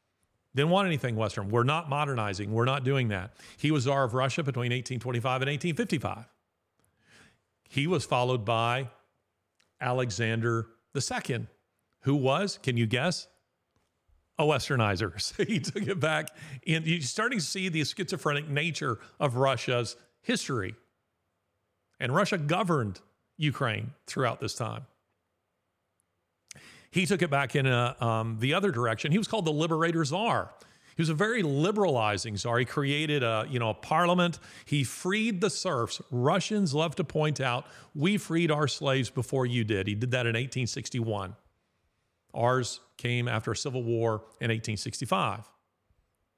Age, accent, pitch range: 50-69, American, 110-155 Hz